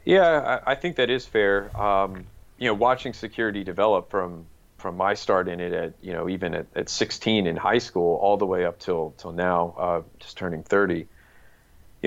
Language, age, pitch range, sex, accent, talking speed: English, 30-49, 85-100 Hz, male, American, 200 wpm